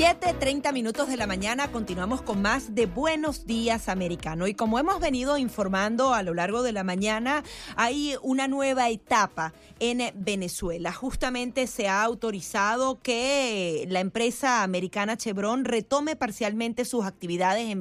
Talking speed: 140 wpm